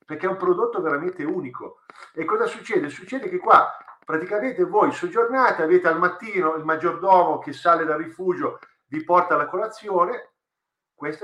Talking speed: 155 wpm